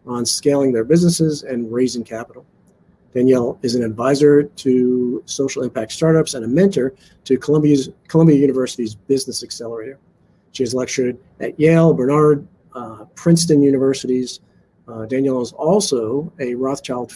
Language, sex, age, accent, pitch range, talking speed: English, male, 40-59, American, 120-145 Hz, 135 wpm